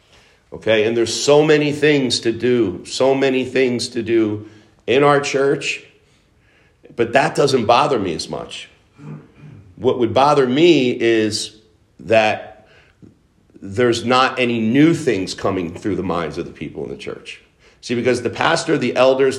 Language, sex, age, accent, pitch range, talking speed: English, male, 50-69, American, 115-145 Hz, 155 wpm